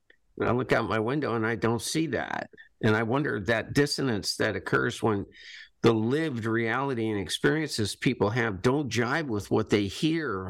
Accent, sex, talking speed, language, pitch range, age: American, male, 175 wpm, English, 105-135 Hz, 50-69